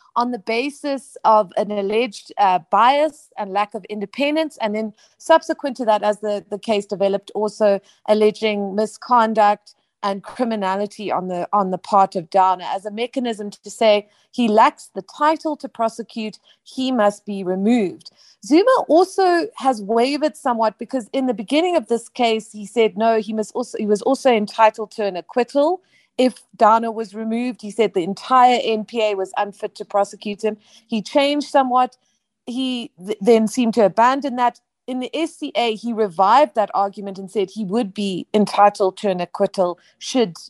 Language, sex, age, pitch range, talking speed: English, female, 30-49, 205-250 Hz, 170 wpm